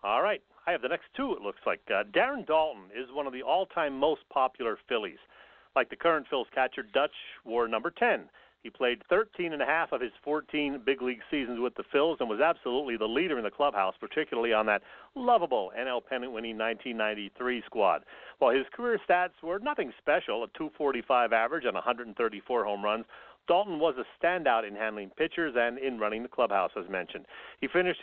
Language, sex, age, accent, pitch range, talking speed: English, male, 40-59, American, 115-160 Hz, 195 wpm